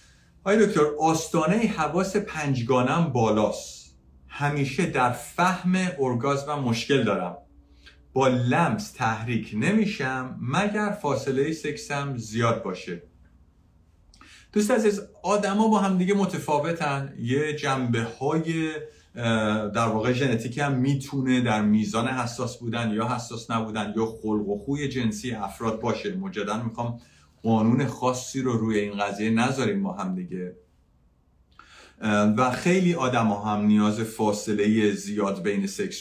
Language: Persian